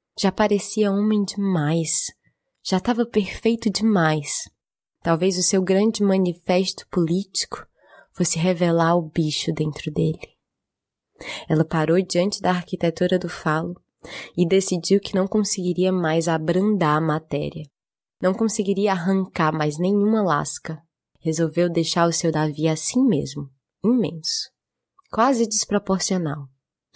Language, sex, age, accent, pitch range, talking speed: Portuguese, female, 20-39, Brazilian, 160-195 Hz, 115 wpm